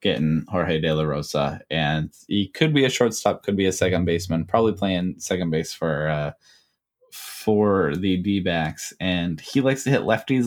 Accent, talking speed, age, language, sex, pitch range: American, 185 wpm, 10-29, English, male, 80-105 Hz